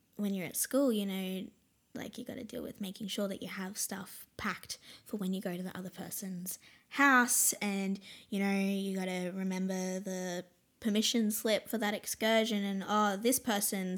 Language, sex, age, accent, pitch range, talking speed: English, female, 10-29, Australian, 185-225 Hz, 195 wpm